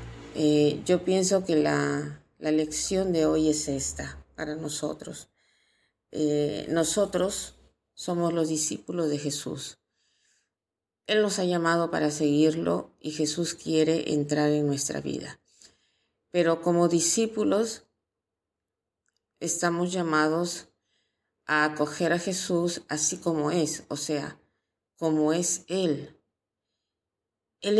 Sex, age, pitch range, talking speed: female, 40-59, 145-180 Hz, 110 wpm